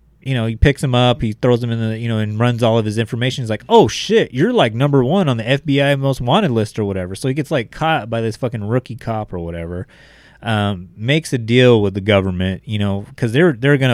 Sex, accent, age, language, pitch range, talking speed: male, American, 30-49, English, 105-125 Hz, 260 wpm